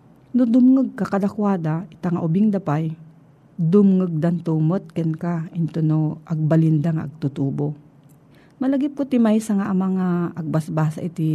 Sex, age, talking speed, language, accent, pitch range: female, 40-59, 125 wpm, Filipino, native, 160-235 Hz